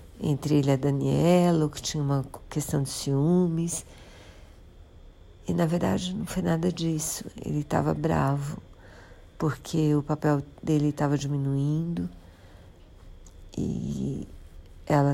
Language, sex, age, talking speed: Portuguese, female, 50-69, 115 wpm